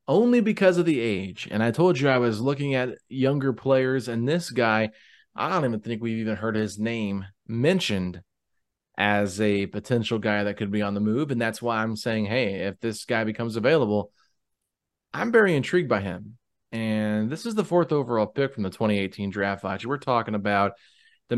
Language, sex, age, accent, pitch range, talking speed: English, male, 30-49, American, 105-140 Hz, 195 wpm